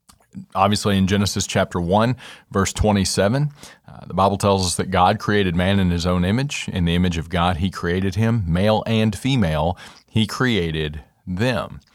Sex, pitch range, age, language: male, 95-115 Hz, 40-59, English